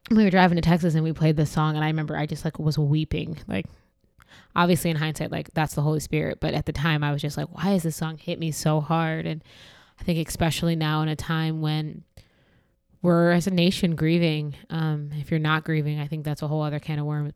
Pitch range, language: 150-160 Hz, English